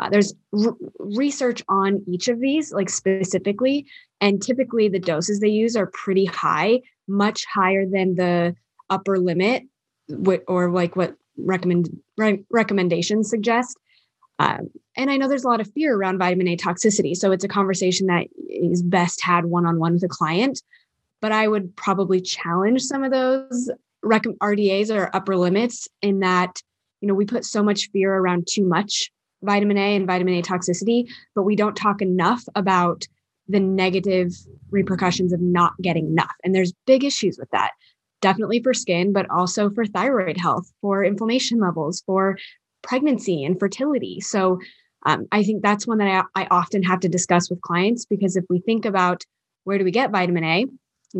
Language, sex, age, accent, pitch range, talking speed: English, female, 20-39, American, 180-215 Hz, 170 wpm